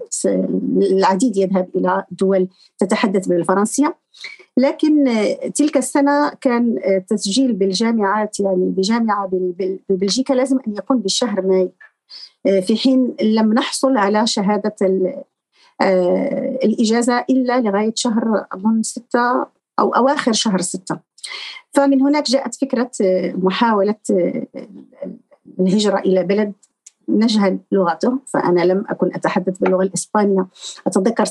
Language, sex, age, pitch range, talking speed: Arabic, female, 40-59, 195-255 Hz, 100 wpm